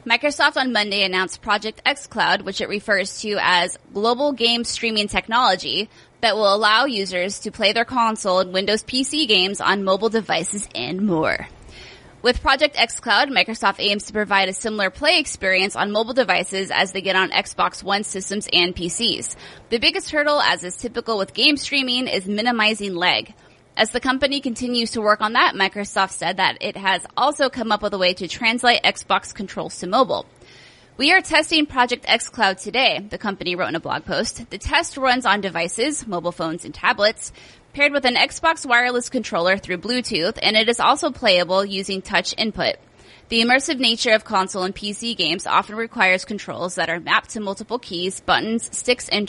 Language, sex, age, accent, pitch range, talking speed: English, female, 20-39, American, 190-245 Hz, 185 wpm